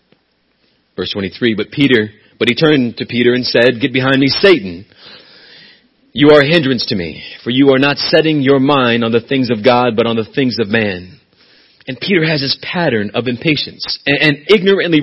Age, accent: 40-59, American